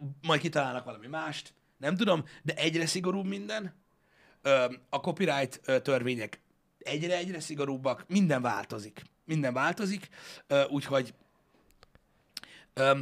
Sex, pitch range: male, 125-160 Hz